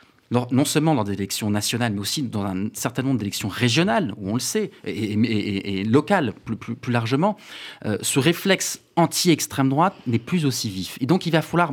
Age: 30-49